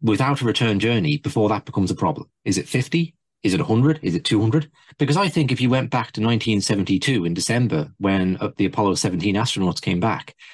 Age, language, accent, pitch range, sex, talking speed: 40-59, English, British, 105-145 Hz, male, 205 wpm